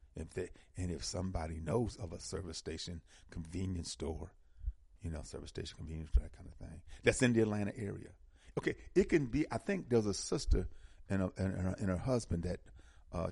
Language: English